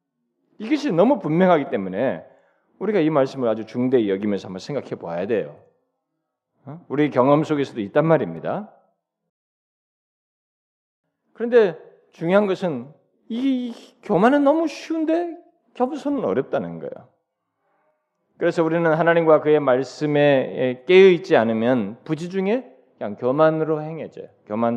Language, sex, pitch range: Korean, male, 135-200 Hz